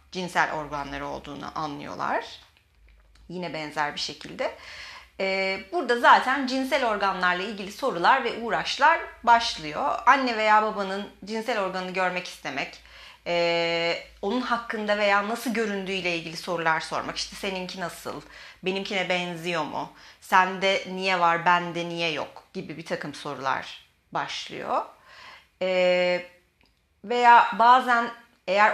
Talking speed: 110 wpm